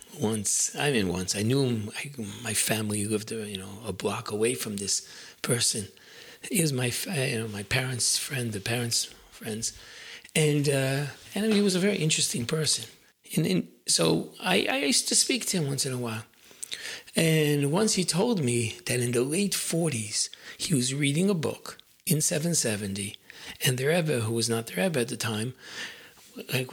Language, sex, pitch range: English, male, 115-165 Hz